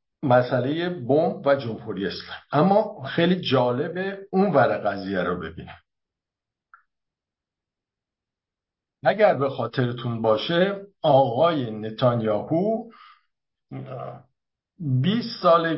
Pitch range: 115-165 Hz